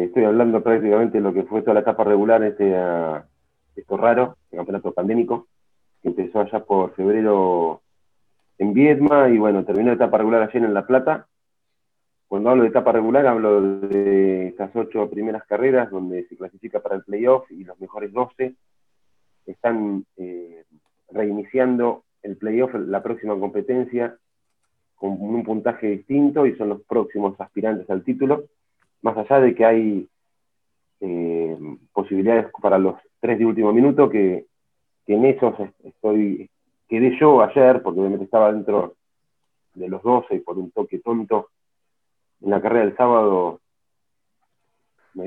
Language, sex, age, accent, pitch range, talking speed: Spanish, male, 30-49, Argentinian, 95-120 Hz, 150 wpm